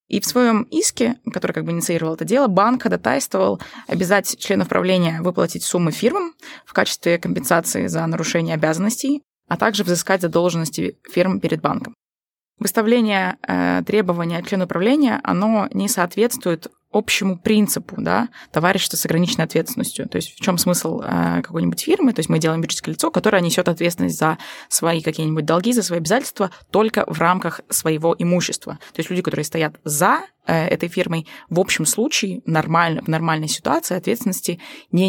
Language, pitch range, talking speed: Russian, 170-230 Hz, 155 wpm